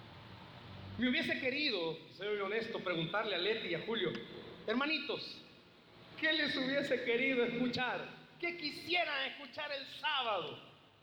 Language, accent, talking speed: Spanish, Mexican, 120 wpm